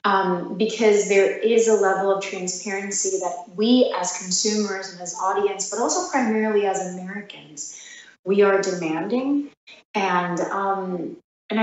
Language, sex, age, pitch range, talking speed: English, female, 30-49, 195-225 Hz, 135 wpm